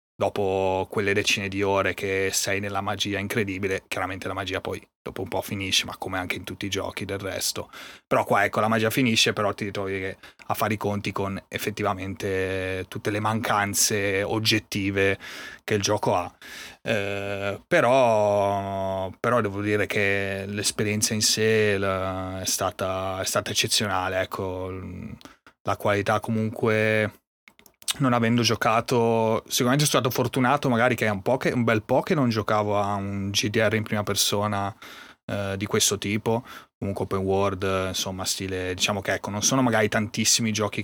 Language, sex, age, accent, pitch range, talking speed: Italian, male, 30-49, native, 95-110 Hz, 160 wpm